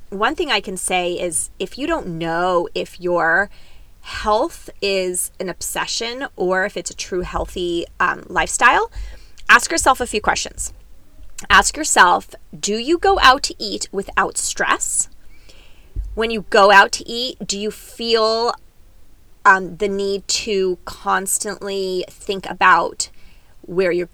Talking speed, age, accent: 140 wpm, 20-39, American